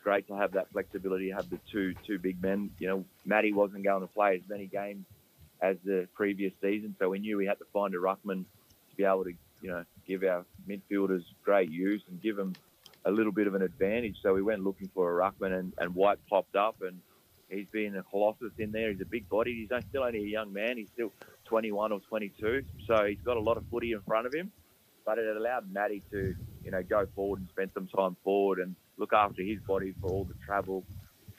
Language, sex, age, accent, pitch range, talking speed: English, male, 30-49, Australian, 95-105 Hz, 240 wpm